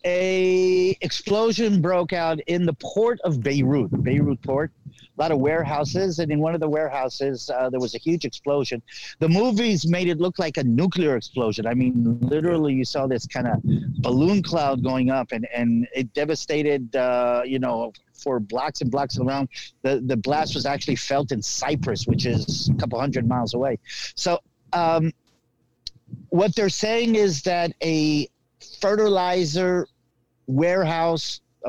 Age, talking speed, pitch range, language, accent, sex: 50-69, 160 wpm, 130-170 Hz, English, American, male